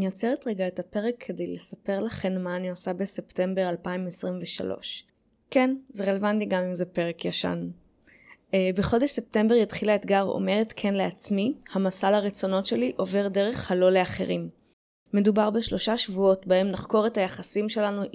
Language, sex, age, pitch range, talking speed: Hebrew, female, 20-39, 185-215 Hz, 140 wpm